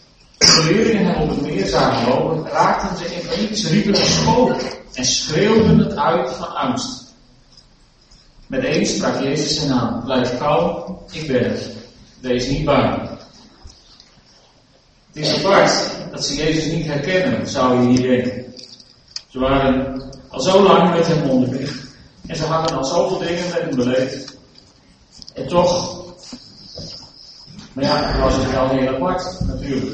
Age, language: 40-59, Dutch